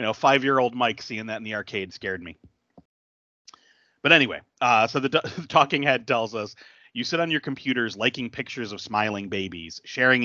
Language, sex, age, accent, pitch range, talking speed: English, male, 30-49, American, 105-130 Hz, 185 wpm